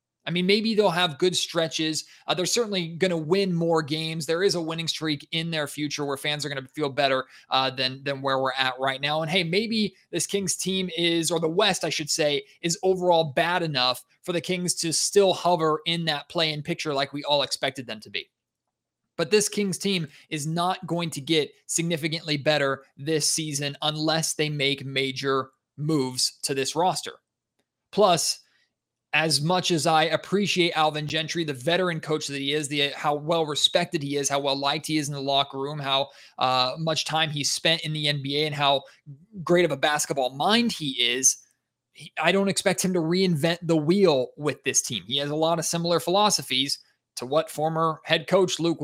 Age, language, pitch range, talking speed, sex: 20-39, English, 140-175 Hz, 200 wpm, male